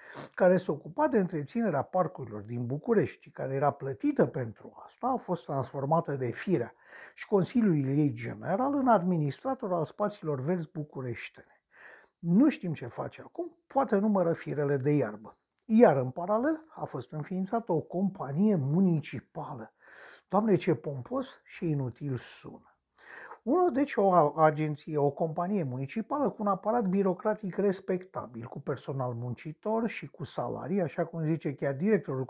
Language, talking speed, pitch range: Romanian, 140 wpm, 145-210 Hz